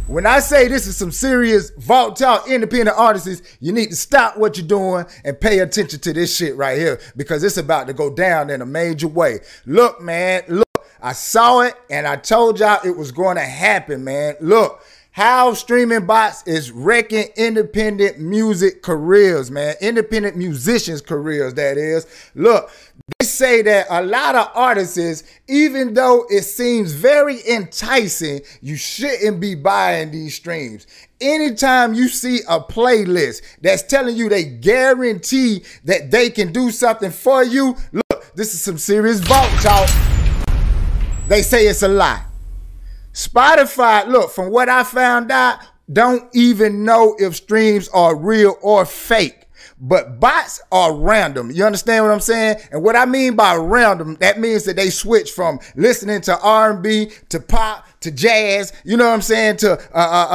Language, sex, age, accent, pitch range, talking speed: English, male, 30-49, American, 175-235 Hz, 165 wpm